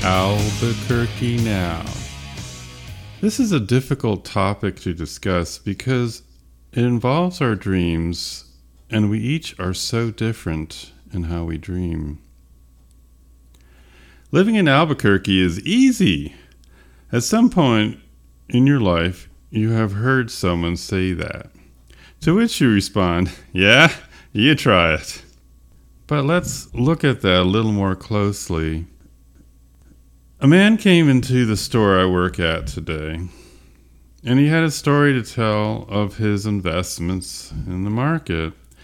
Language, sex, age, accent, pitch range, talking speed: English, male, 40-59, American, 80-130 Hz, 125 wpm